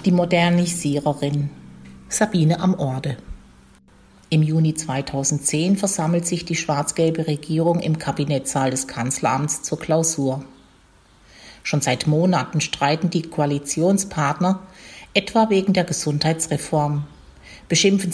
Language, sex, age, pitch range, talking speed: German, female, 50-69, 140-180 Hz, 100 wpm